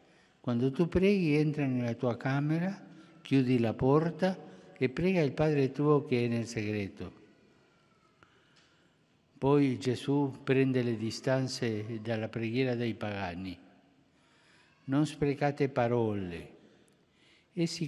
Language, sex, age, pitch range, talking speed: Italian, male, 60-79, 120-145 Hz, 105 wpm